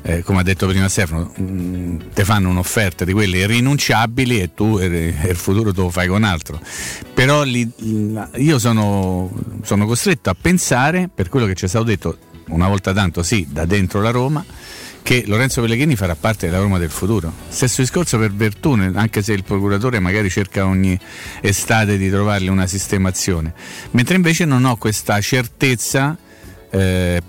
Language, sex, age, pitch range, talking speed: Italian, male, 50-69, 95-120 Hz, 175 wpm